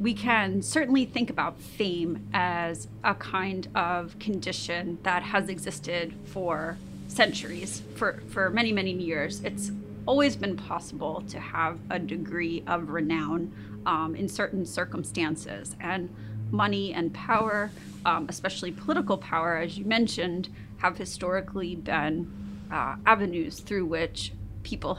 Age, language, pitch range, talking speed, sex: 30-49, English, 160-195 Hz, 130 wpm, female